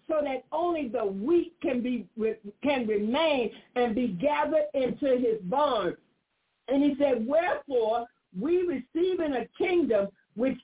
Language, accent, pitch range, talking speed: English, American, 240-320 Hz, 140 wpm